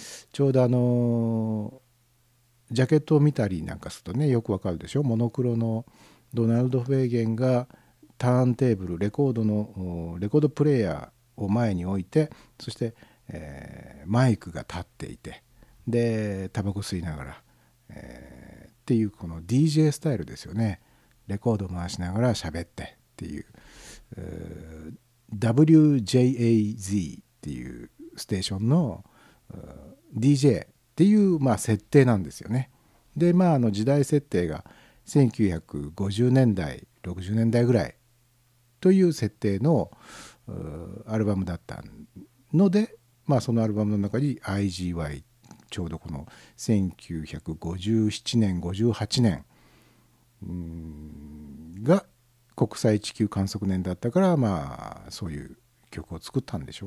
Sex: male